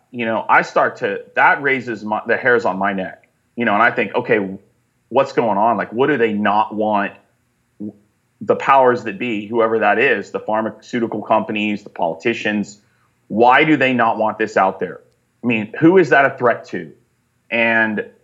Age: 30-49